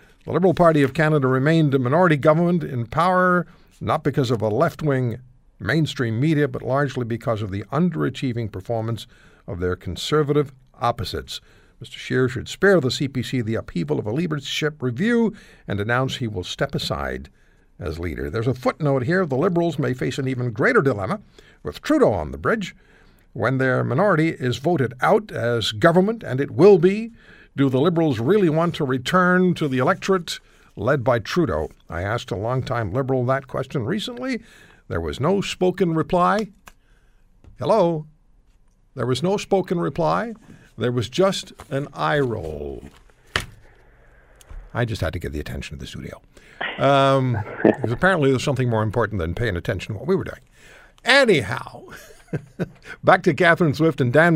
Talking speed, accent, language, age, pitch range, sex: 160 wpm, American, English, 60-79, 120-170 Hz, male